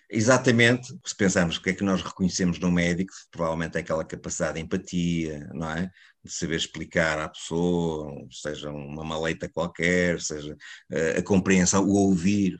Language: Portuguese